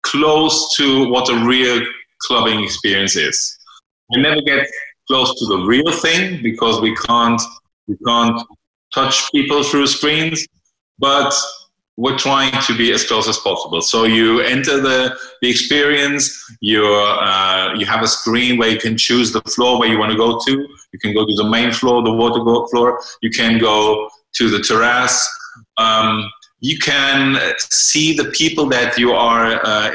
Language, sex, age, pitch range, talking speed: English, male, 30-49, 115-140 Hz, 170 wpm